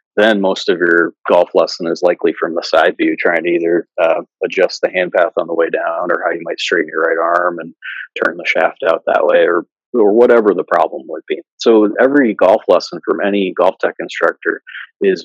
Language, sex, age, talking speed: English, male, 30-49, 220 wpm